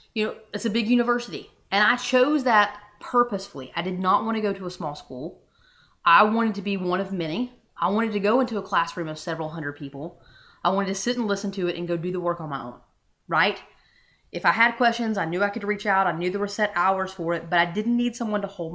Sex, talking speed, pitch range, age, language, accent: female, 260 wpm, 180-235 Hz, 30-49, English, American